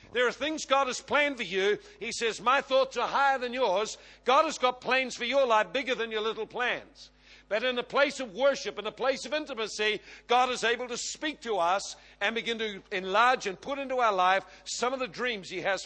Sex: male